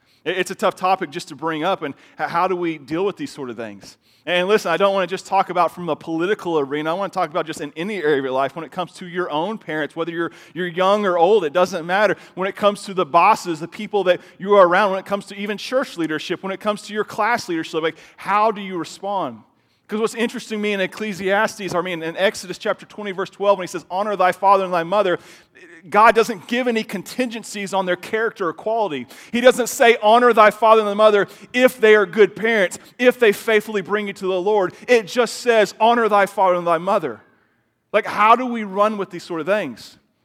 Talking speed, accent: 245 wpm, American